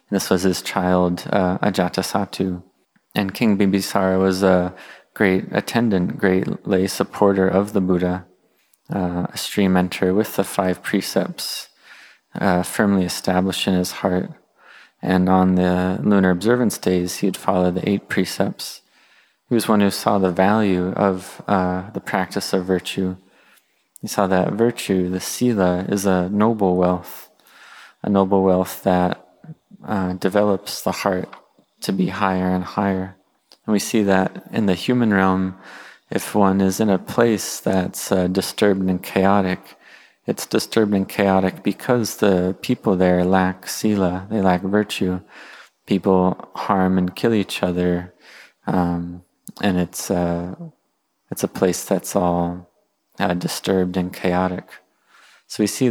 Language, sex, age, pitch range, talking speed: English, male, 20-39, 90-100 Hz, 145 wpm